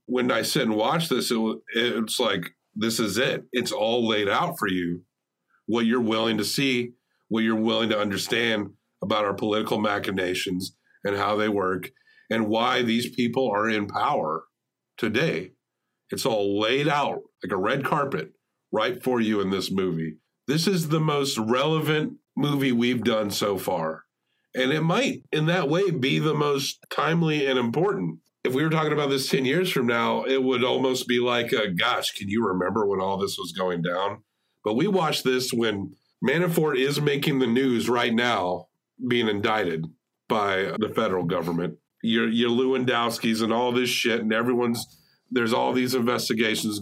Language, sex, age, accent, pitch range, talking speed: English, male, 50-69, American, 105-130 Hz, 175 wpm